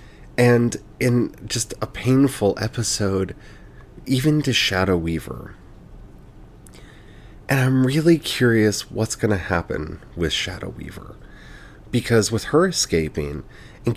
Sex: male